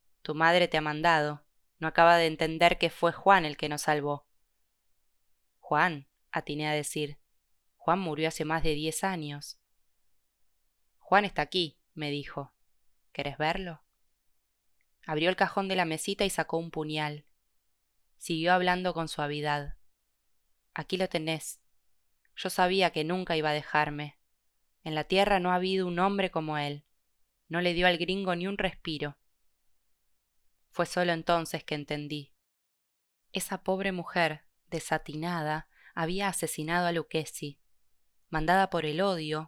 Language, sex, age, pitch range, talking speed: Spanish, female, 20-39, 145-180 Hz, 140 wpm